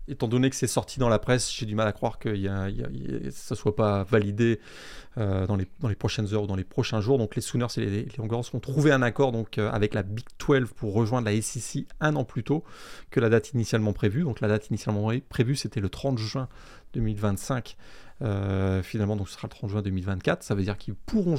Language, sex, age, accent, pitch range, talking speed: French, male, 30-49, French, 105-140 Hz, 235 wpm